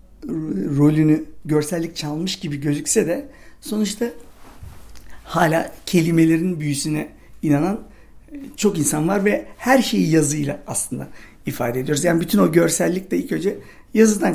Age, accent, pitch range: 60-79, native, 150-205 Hz